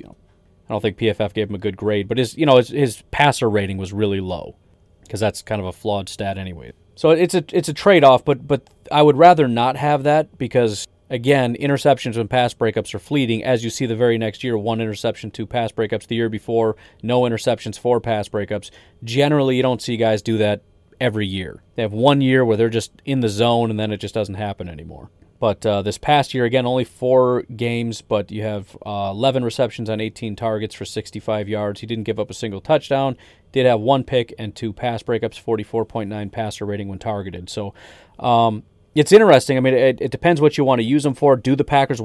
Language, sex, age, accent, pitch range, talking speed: English, male, 30-49, American, 105-130 Hz, 225 wpm